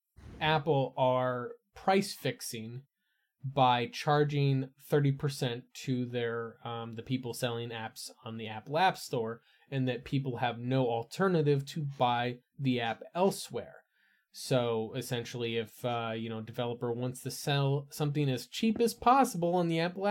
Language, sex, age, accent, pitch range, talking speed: English, male, 20-39, American, 120-150 Hz, 145 wpm